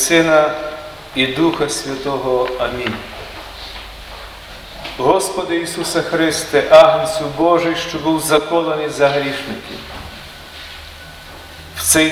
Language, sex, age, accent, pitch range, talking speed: Ukrainian, male, 40-59, native, 135-165 Hz, 85 wpm